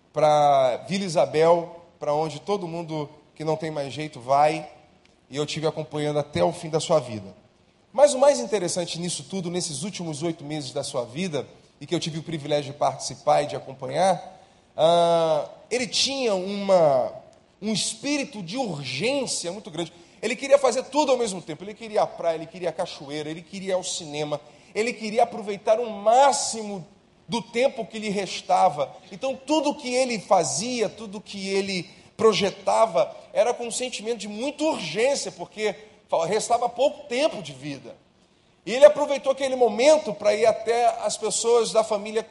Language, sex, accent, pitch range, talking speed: Portuguese, male, Brazilian, 170-230 Hz, 165 wpm